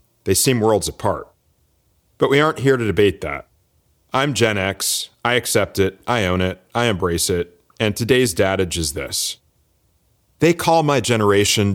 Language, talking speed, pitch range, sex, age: English, 165 wpm, 85-120 Hz, male, 40-59